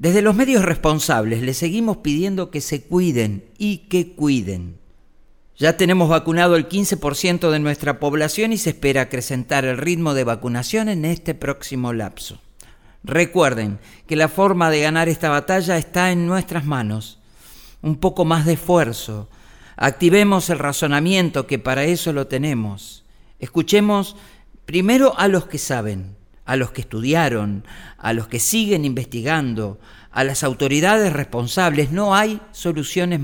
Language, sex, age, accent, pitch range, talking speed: Spanish, male, 50-69, Argentinian, 120-175 Hz, 145 wpm